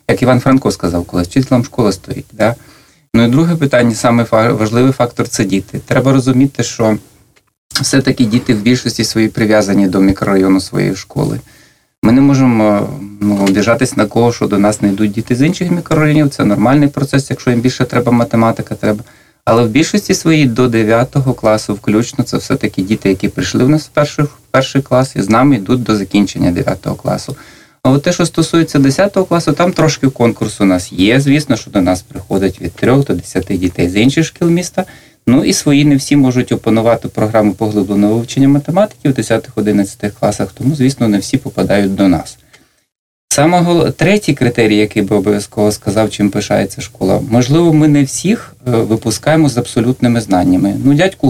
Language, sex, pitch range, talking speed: Russian, male, 105-140 Hz, 175 wpm